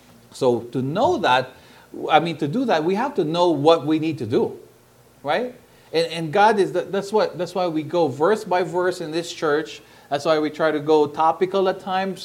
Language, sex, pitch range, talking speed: English, male, 125-165 Hz, 225 wpm